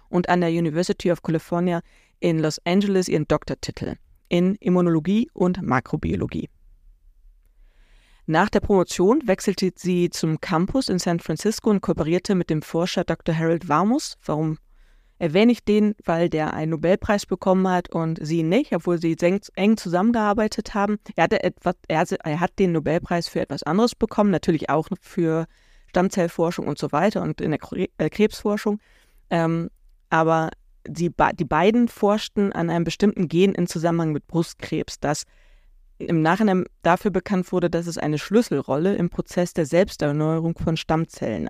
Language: German